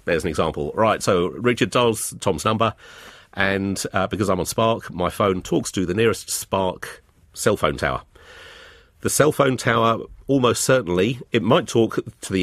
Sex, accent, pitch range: male, British, 95-120 Hz